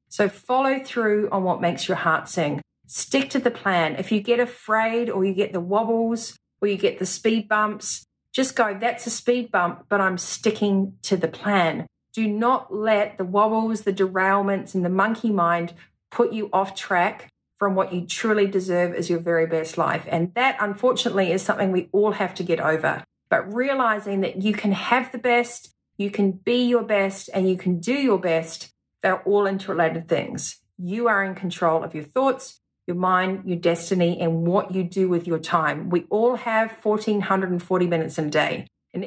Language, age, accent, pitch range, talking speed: English, 40-59, Australian, 180-225 Hz, 195 wpm